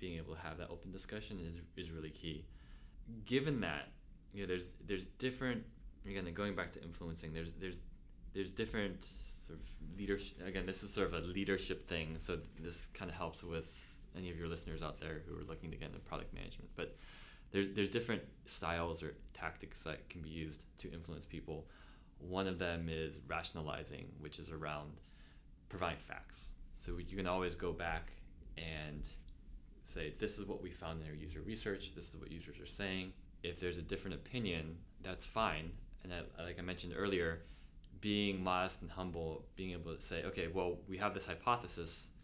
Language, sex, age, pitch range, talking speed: English, male, 20-39, 80-95 Hz, 190 wpm